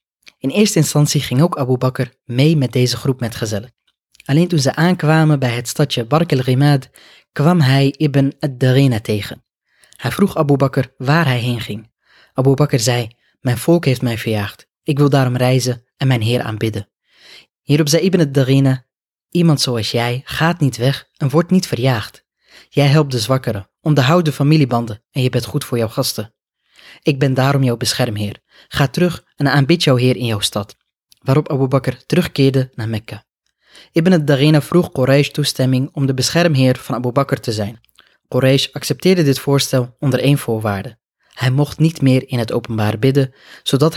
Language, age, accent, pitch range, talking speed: Dutch, 20-39, Dutch, 120-145 Hz, 175 wpm